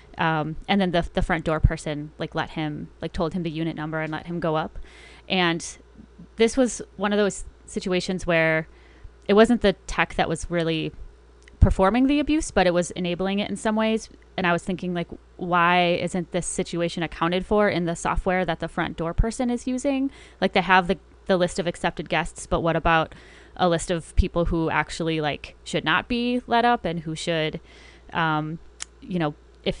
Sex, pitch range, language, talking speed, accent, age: female, 165-195 Hz, English, 200 wpm, American, 20-39